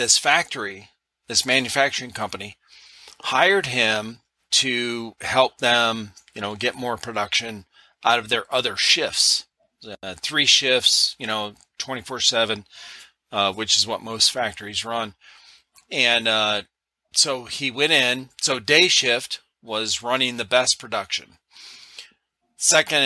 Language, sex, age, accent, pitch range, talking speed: English, male, 40-59, American, 110-135 Hz, 120 wpm